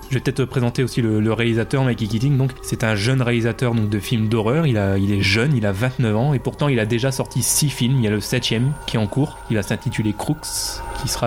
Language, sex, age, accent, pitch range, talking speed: French, male, 20-39, French, 110-130 Hz, 275 wpm